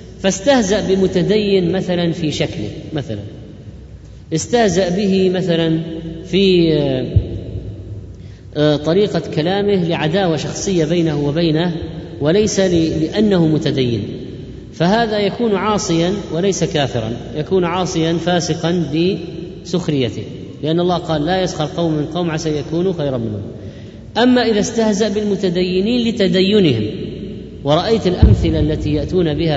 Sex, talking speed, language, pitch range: female, 100 wpm, Arabic, 150-190 Hz